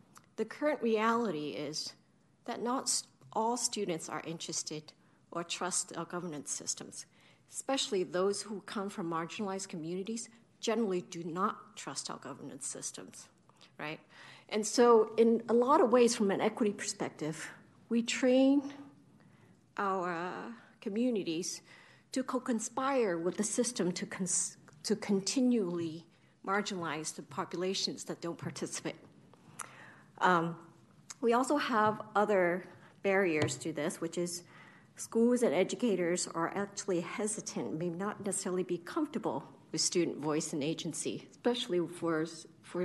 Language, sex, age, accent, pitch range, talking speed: English, female, 50-69, American, 170-215 Hz, 125 wpm